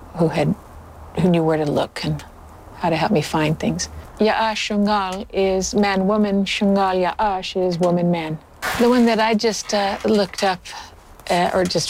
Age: 60-79